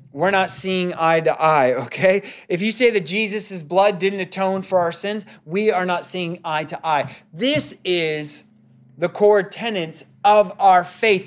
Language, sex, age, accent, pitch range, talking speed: English, male, 30-49, American, 180-230 Hz, 175 wpm